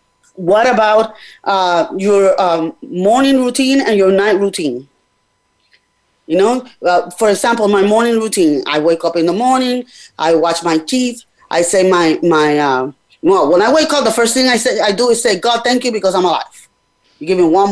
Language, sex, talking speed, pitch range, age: English, female, 195 wpm, 170-240 Hz, 20-39